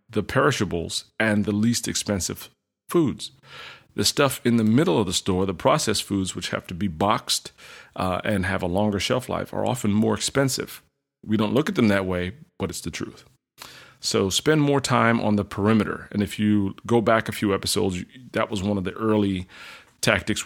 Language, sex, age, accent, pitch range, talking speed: English, male, 30-49, American, 100-120 Hz, 195 wpm